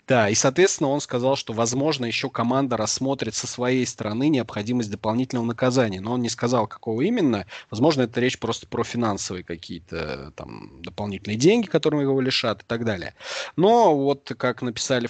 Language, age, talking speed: Russian, 30-49, 165 wpm